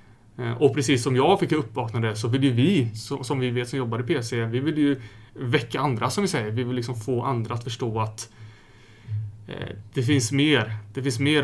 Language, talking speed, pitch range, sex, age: Swedish, 215 wpm, 115-135 Hz, male, 30-49